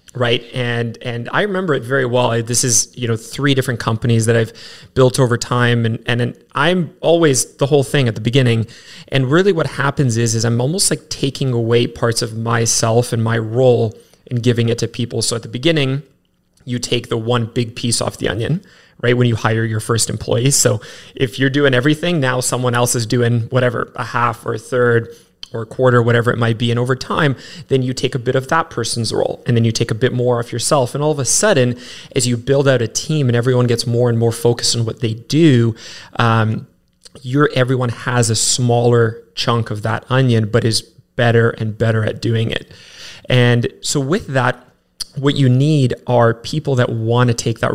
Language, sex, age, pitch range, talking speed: English, male, 20-39, 115-135 Hz, 215 wpm